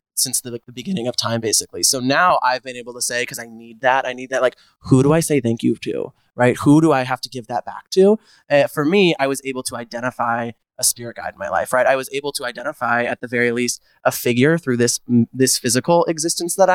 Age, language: 20-39, English